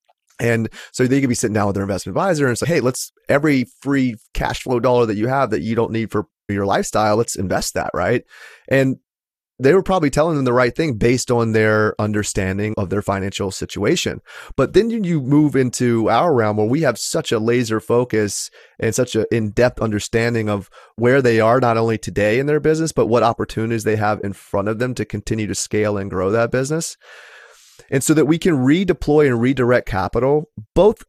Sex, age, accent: male, 30-49, American